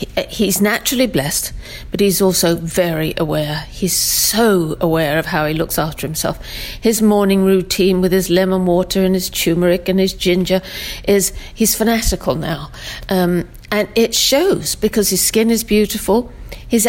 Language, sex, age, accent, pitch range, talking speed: English, female, 50-69, British, 165-205 Hz, 155 wpm